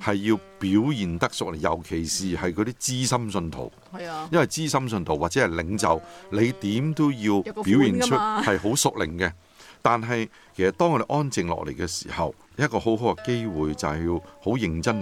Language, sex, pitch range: Chinese, male, 85-115 Hz